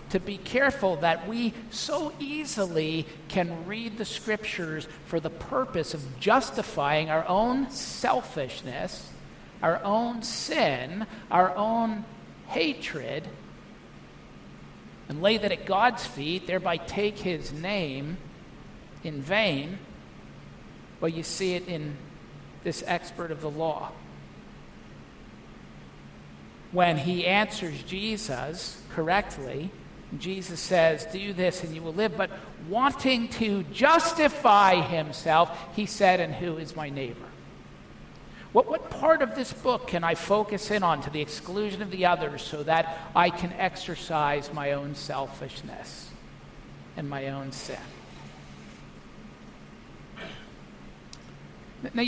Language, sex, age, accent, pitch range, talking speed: English, male, 50-69, American, 145-210 Hz, 120 wpm